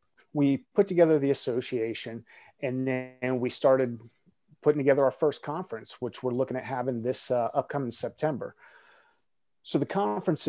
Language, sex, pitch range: English, male, 120-140 Hz